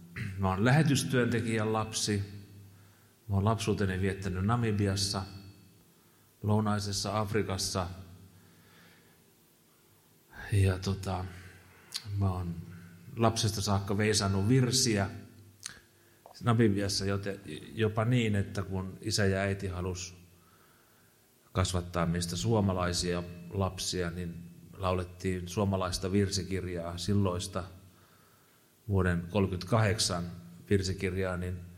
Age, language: 30-49, Finnish